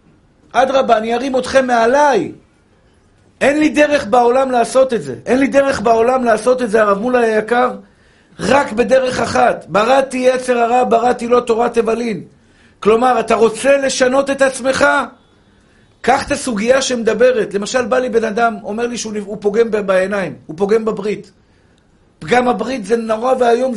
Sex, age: male, 50-69